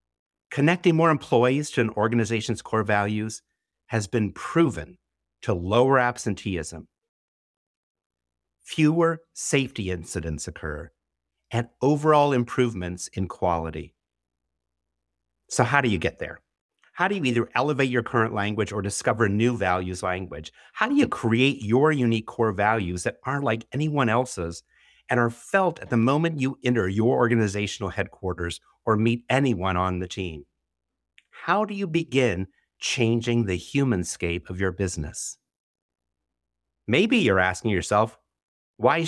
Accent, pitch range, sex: American, 85-130 Hz, male